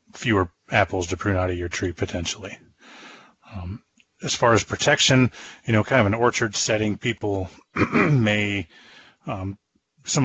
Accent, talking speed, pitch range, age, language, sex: American, 145 wpm, 95-105 Hz, 30-49, English, male